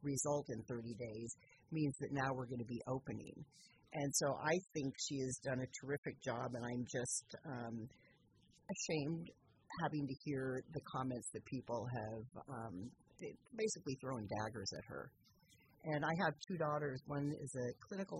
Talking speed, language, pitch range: 160 wpm, English, 130-155 Hz